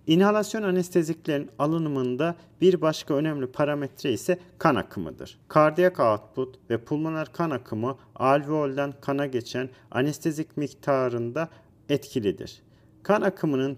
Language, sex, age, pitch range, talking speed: Turkish, male, 40-59, 125-160 Hz, 105 wpm